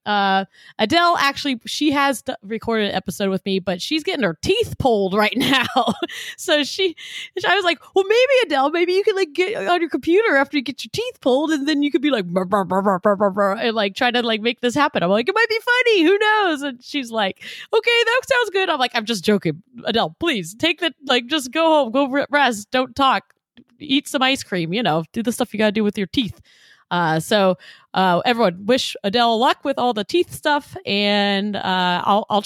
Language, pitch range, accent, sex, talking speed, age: English, 200-300 Hz, American, female, 230 wpm, 30-49